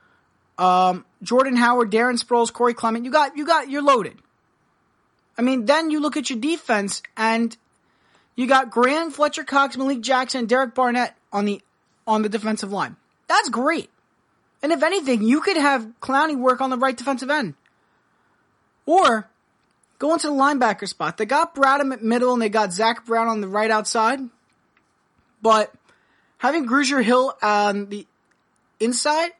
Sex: male